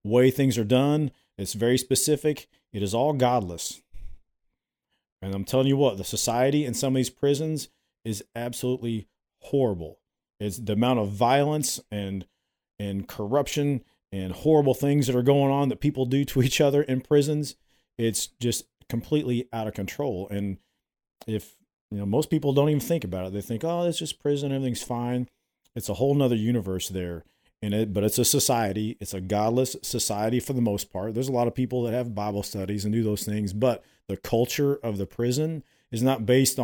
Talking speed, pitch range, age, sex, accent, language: 185 wpm, 110-140 Hz, 40-59, male, American, English